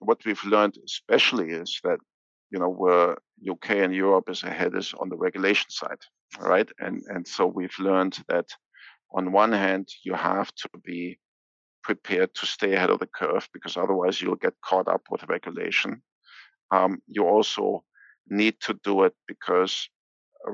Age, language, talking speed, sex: 50-69, English, 165 wpm, male